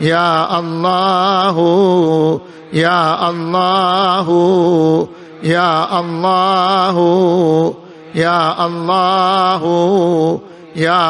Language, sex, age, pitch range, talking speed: Arabic, male, 50-69, 165-185 Hz, 60 wpm